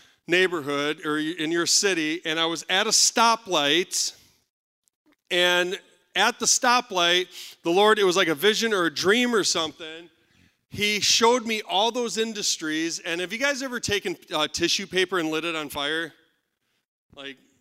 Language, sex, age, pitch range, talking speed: English, male, 40-59, 155-210 Hz, 155 wpm